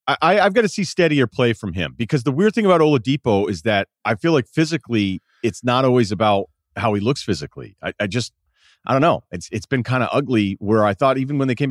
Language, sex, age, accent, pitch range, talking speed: English, male, 40-59, American, 100-130 Hz, 245 wpm